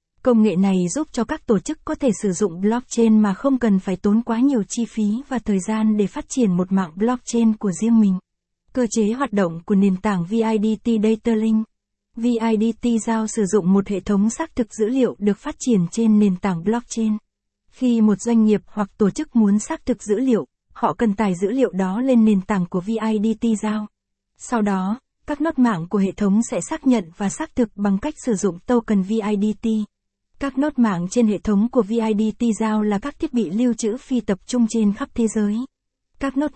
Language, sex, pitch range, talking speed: Vietnamese, female, 205-240 Hz, 210 wpm